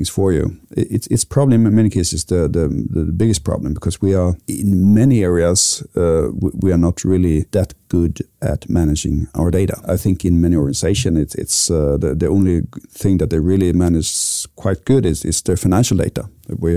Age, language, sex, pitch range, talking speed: 50-69, English, male, 85-100 Hz, 205 wpm